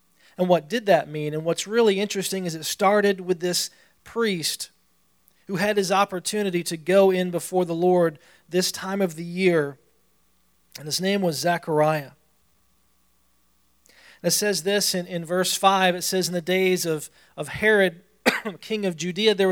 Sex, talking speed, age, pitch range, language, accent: male, 165 wpm, 40-59, 150-190 Hz, English, American